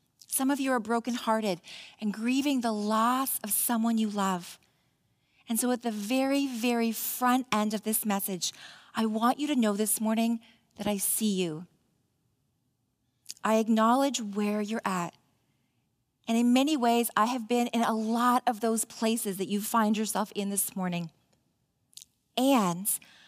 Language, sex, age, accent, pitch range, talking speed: English, female, 40-59, American, 195-245 Hz, 155 wpm